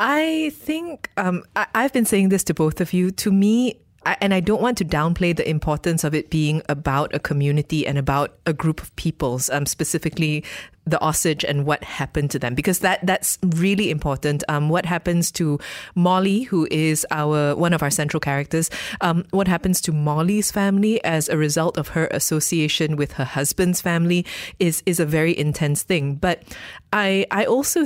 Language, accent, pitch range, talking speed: English, Malaysian, 150-185 Hz, 185 wpm